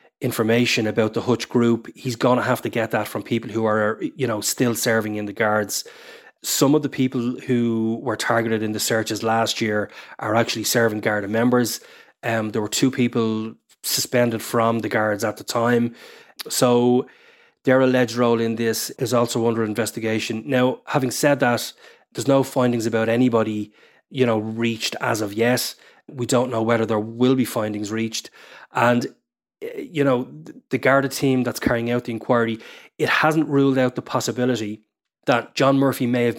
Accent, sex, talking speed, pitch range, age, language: Irish, male, 180 wpm, 110-125 Hz, 20-39, English